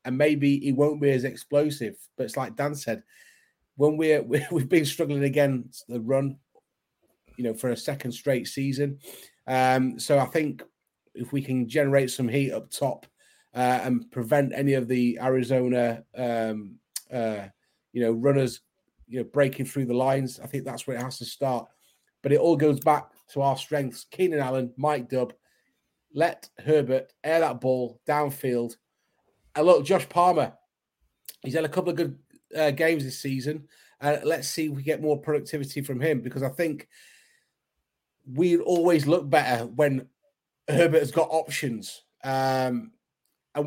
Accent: British